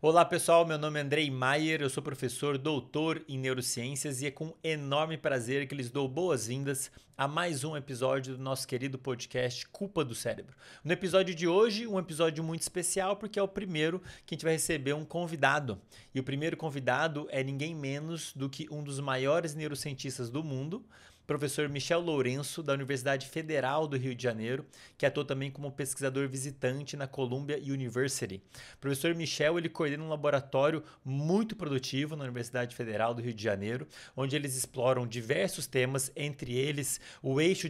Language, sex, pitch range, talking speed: Portuguese, male, 130-160 Hz, 175 wpm